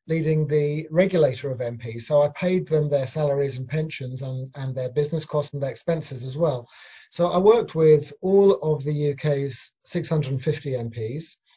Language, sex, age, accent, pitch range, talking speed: English, male, 30-49, British, 140-165 Hz, 170 wpm